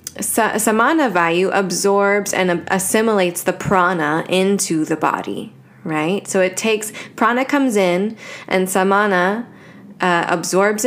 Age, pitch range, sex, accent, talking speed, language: 10-29, 175-210 Hz, female, American, 115 wpm, English